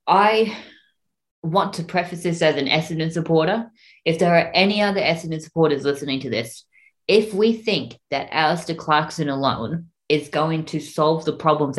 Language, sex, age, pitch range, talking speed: English, female, 20-39, 135-165 Hz, 165 wpm